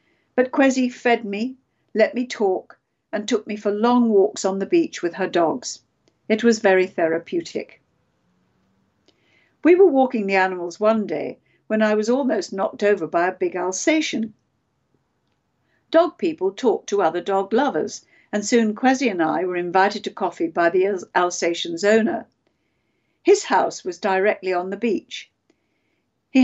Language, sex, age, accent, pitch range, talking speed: English, female, 60-79, British, 190-265 Hz, 155 wpm